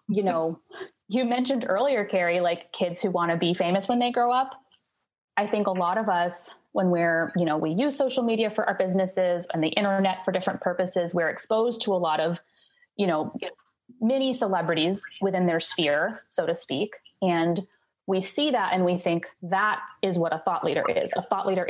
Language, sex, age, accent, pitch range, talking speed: English, female, 20-39, American, 175-220 Hz, 200 wpm